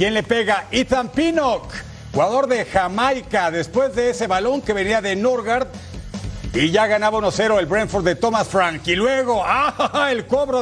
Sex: male